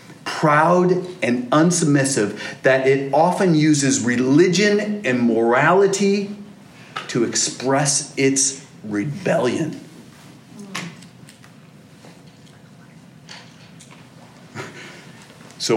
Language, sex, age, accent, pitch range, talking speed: English, male, 40-59, American, 135-185 Hz, 55 wpm